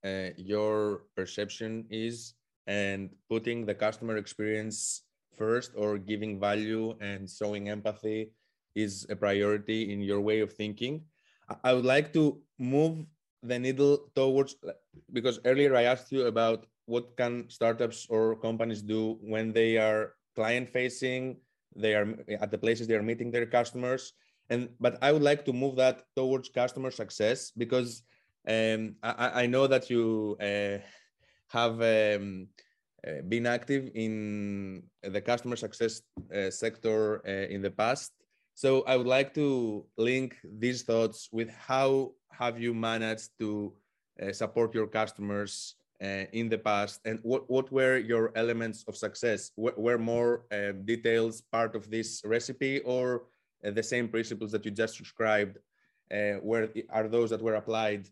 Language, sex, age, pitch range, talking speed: English, male, 20-39, 105-125 Hz, 155 wpm